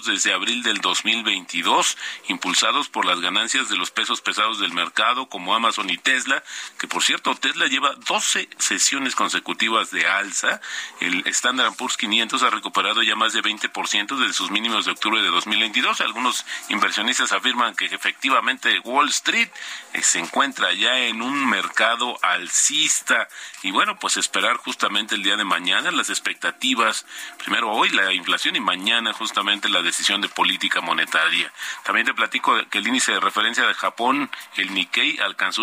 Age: 40-59